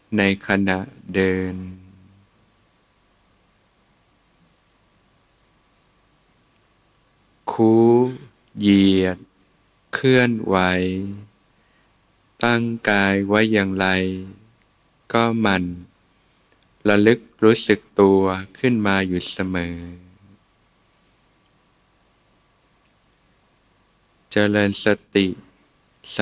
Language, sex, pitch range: Thai, male, 95-105 Hz